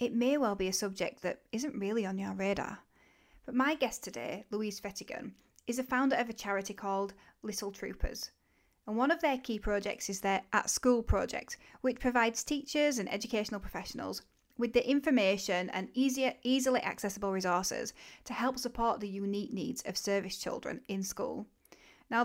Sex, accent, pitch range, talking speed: female, British, 195-245 Hz, 165 wpm